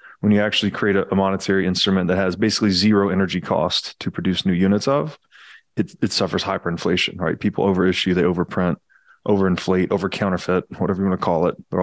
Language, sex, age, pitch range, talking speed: English, male, 20-39, 95-105 Hz, 190 wpm